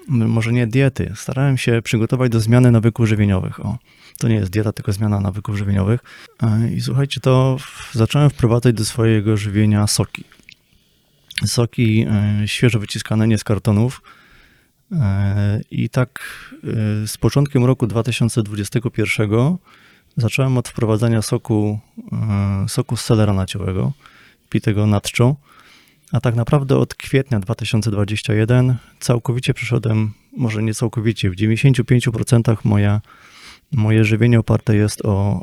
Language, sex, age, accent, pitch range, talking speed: Polish, male, 20-39, native, 105-125 Hz, 115 wpm